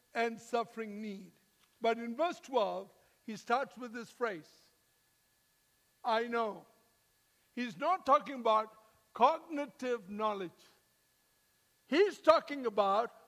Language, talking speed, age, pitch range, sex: English, 105 wpm, 60-79, 215-275 Hz, male